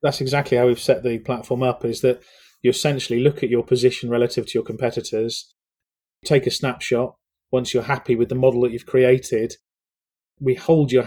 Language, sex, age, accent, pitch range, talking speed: English, male, 30-49, British, 125-145 Hz, 190 wpm